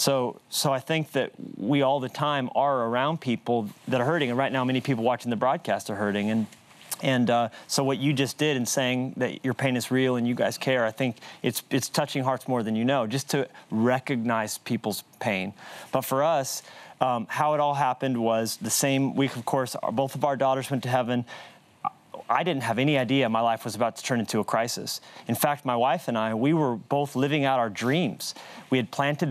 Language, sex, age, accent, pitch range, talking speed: English, male, 30-49, American, 120-145 Hz, 225 wpm